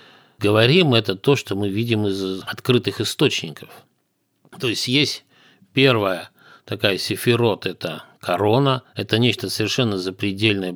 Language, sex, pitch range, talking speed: Russian, male, 100-130 Hz, 130 wpm